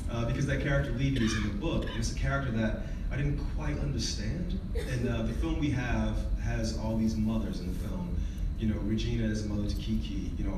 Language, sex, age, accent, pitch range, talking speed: English, male, 30-49, American, 95-110 Hz, 235 wpm